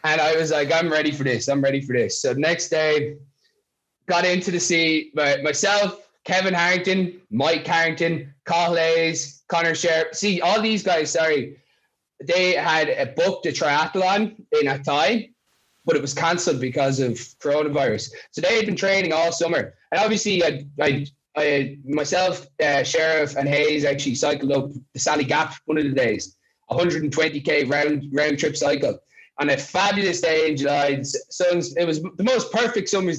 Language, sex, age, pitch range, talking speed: English, male, 20-39, 145-180 Hz, 170 wpm